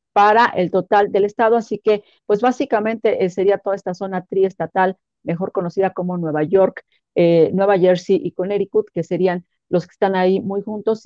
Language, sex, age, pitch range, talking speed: Spanish, female, 40-59, 170-205 Hz, 180 wpm